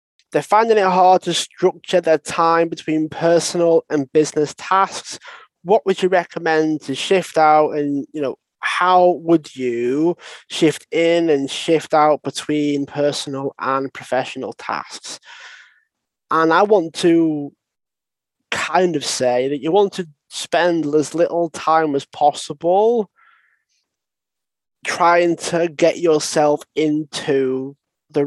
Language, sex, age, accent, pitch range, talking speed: English, male, 20-39, British, 150-180 Hz, 125 wpm